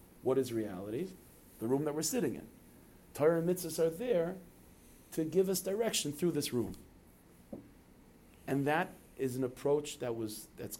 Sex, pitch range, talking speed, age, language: male, 110-135 Hz, 160 wpm, 40-59, English